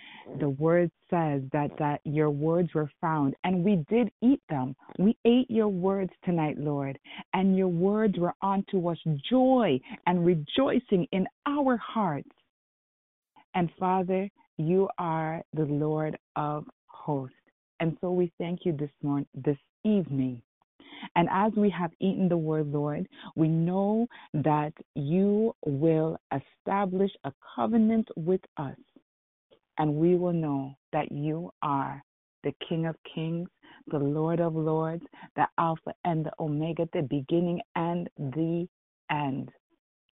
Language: English